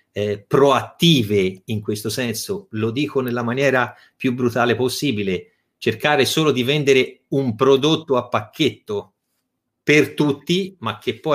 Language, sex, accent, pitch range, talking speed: Italian, male, native, 105-140 Hz, 130 wpm